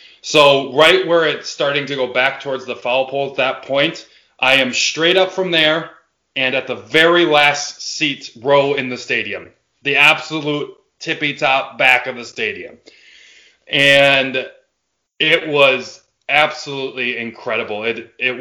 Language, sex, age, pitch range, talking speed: English, male, 20-39, 125-140 Hz, 150 wpm